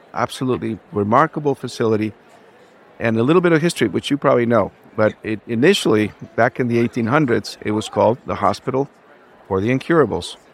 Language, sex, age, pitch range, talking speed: English, male, 50-69, 100-125 Hz, 155 wpm